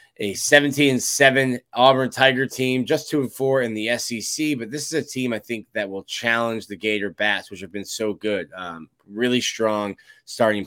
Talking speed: 200 wpm